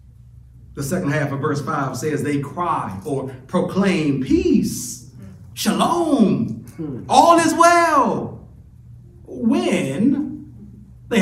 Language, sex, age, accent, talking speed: English, male, 40-59, American, 95 wpm